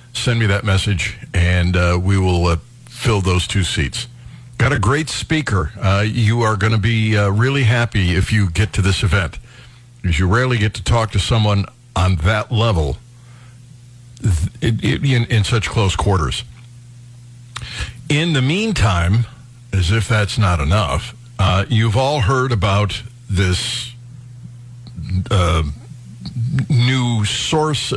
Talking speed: 145 wpm